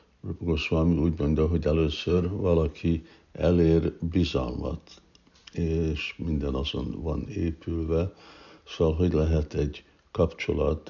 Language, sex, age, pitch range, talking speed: Hungarian, male, 60-79, 75-85 Hz, 100 wpm